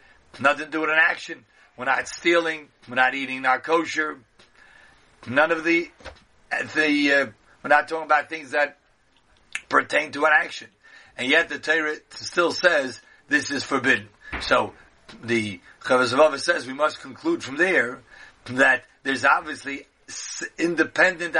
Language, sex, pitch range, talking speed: English, male, 130-160 Hz, 145 wpm